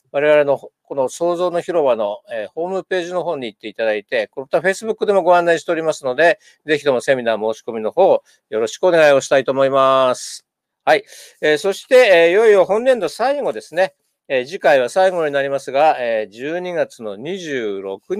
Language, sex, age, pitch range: Japanese, male, 50-69, 140-215 Hz